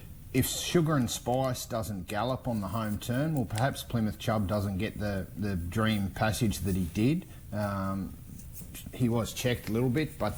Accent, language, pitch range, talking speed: Australian, English, 105-125 Hz, 180 wpm